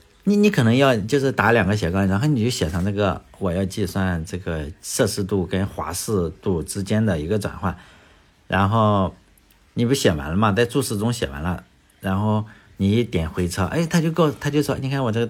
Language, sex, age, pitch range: Chinese, male, 50-69, 90-130 Hz